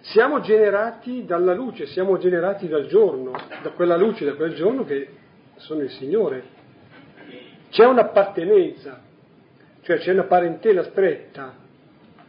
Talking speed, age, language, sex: 120 wpm, 40-59, Italian, male